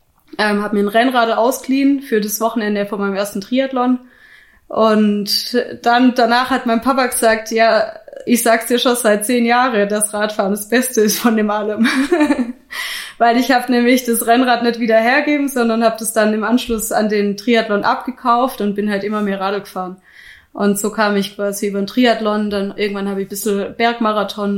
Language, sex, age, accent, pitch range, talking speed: German, female, 20-39, German, 205-240 Hz, 190 wpm